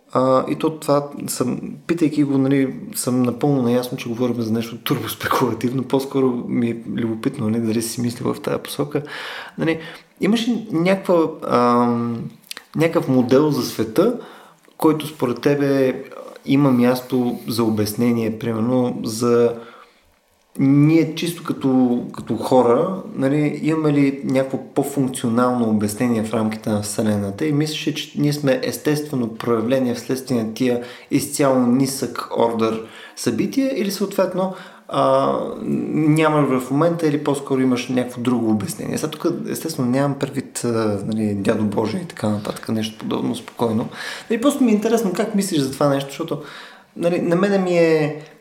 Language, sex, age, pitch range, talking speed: Bulgarian, male, 30-49, 120-155 Hz, 145 wpm